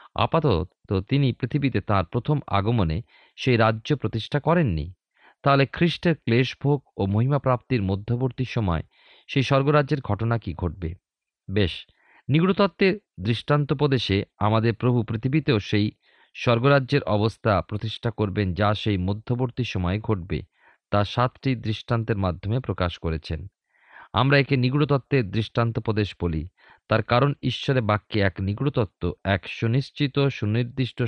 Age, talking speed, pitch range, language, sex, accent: 40-59, 120 wpm, 100-135 Hz, Bengali, male, native